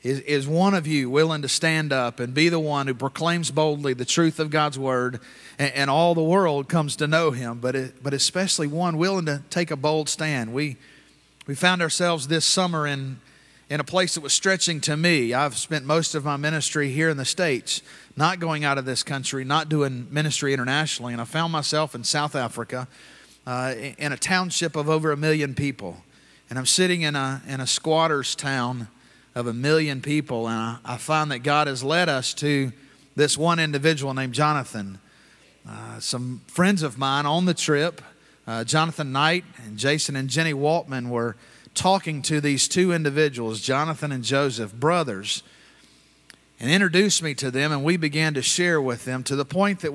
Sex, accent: male, American